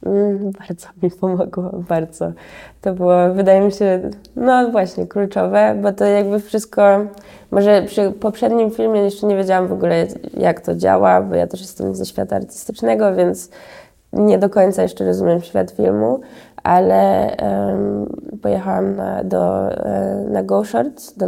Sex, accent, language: female, native, Polish